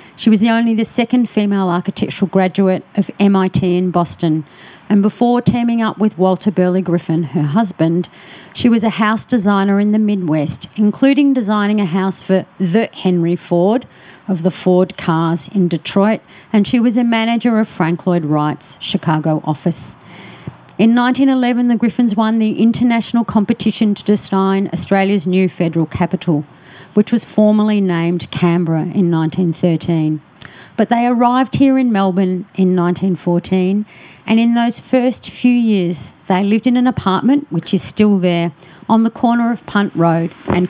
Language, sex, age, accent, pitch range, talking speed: English, female, 40-59, Australian, 175-225 Hz, 160 wpm